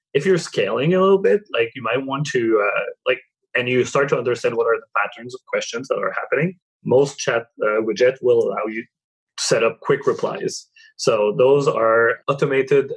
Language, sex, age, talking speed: English, male, 20-39, 200 wpm